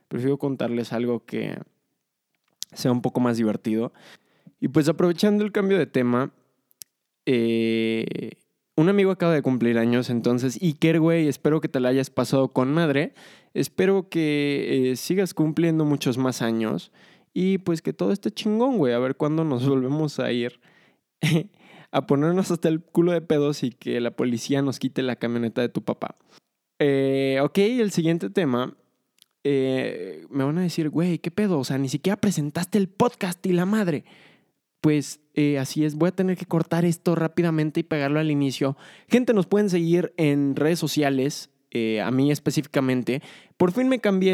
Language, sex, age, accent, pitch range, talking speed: Spanish, male, 20-39, Mexican, 130-170 Hz, 170 wpm